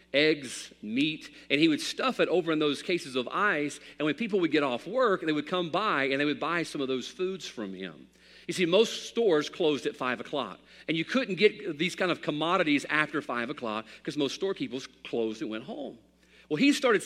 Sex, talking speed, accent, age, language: male, 220 wpm, American, 40-59, English